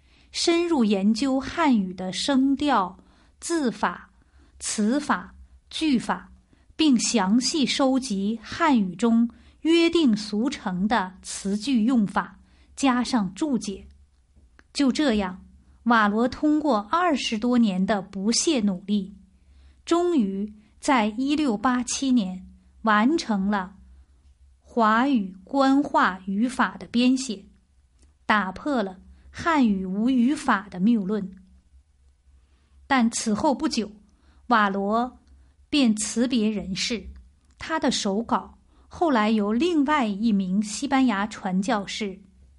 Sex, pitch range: female, 185-255 Hz